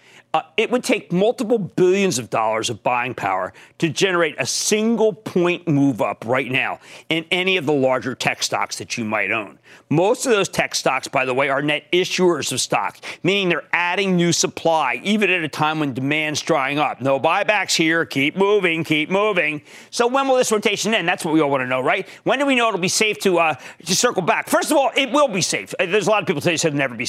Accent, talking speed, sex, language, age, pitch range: American, 235 wpm, male, English, 40-59, 145-205 Hz